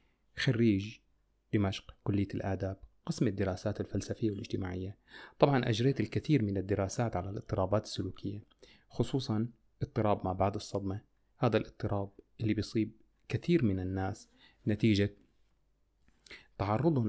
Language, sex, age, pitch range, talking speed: Arabic, male, 30-49, 100-120 Hz, 105 wpm